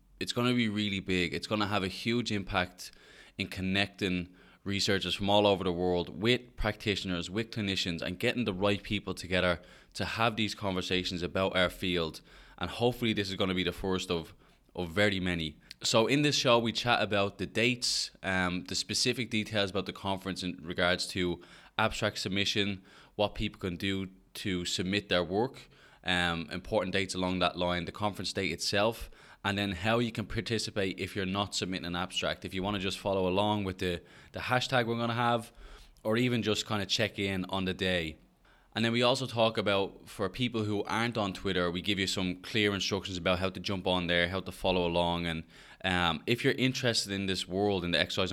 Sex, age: male, 20-39